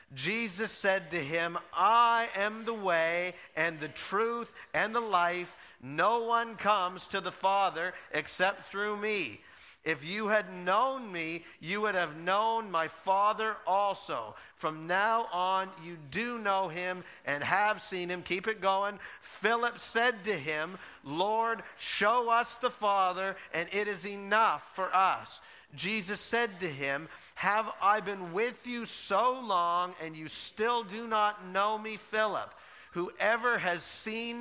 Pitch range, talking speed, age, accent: 175-220 Hz, 150 wpm, 50-69, American